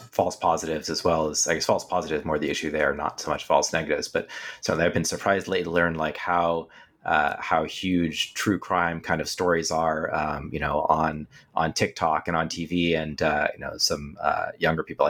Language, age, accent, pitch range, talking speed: English, 30-49, American, 85-105 Hz, 215 wpm